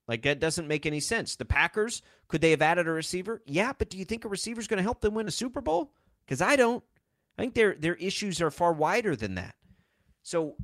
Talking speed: 250 wpm